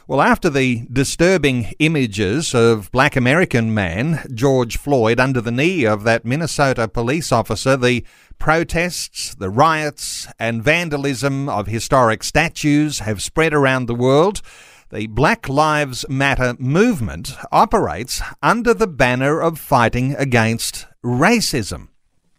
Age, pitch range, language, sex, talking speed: 50-69, 115-155 Hz, English, male, 125 wpm